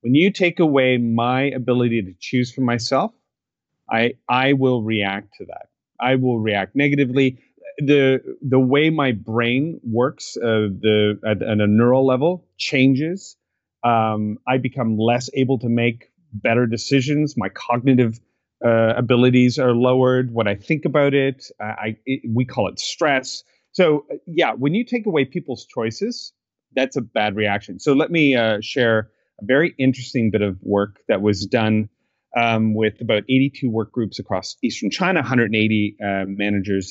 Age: 30-49